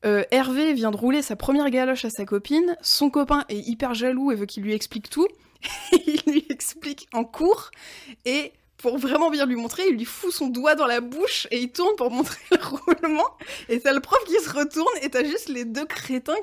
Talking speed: 225 wpm